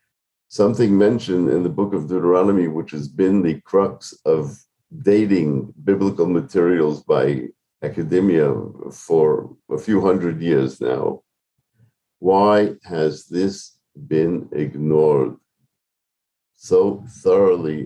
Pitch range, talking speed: 80-115 Hz, 105 wpm